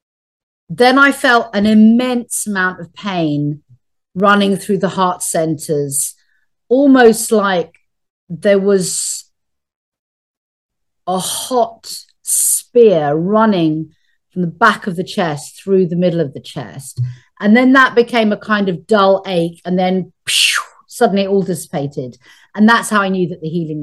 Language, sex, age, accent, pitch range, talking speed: English, female, 40-59, British, 170-215 Hz, 140 wpm